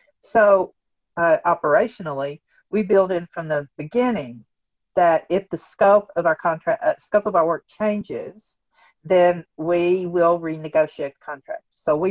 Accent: American